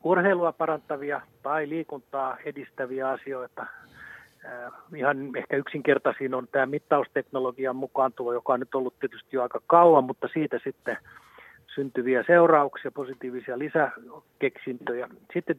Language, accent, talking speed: Finnish, native, 110 wpm